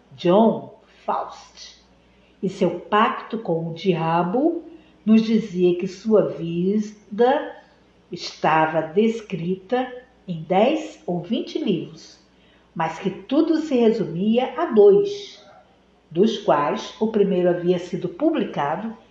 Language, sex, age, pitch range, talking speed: Portuguese, female, 50-69, 170-240 Hz, 105 wpm